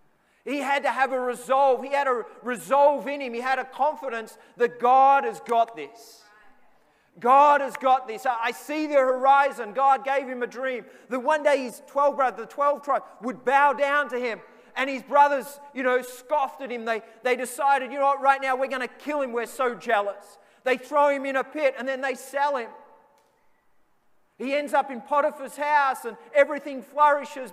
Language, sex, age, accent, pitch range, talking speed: English, male, 30-49, Australian, 245-275 Hz, 200 wpm